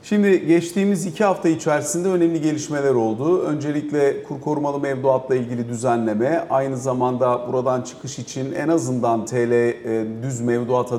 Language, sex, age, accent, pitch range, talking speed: Turkish, male, 40-59, native, 120-170 Hz, 130 wpm